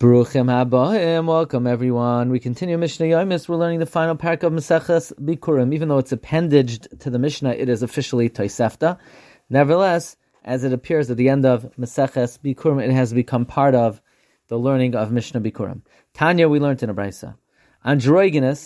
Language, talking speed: English, 165 wpm